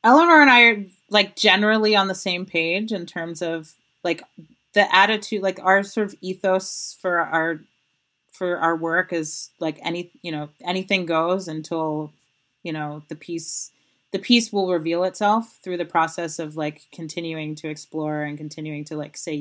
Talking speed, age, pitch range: 175 wpm, 30-49, 150-185 Hz